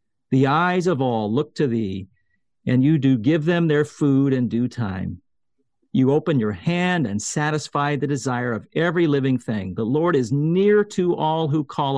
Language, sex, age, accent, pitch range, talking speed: English, male, 50-69, American, 110-145 Hz, 185 wpm